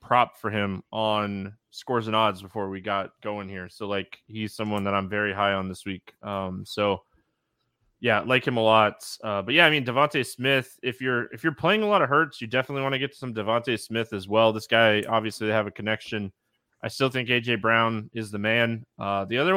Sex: male